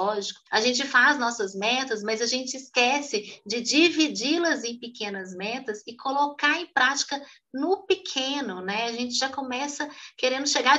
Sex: female